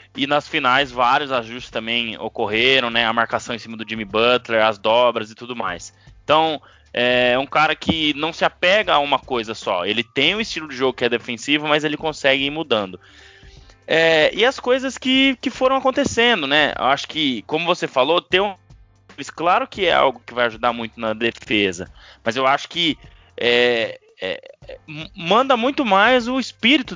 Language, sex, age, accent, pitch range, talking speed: Portuguese, male, 20-39, Brazilian, 115-165 Hz, 185 wpm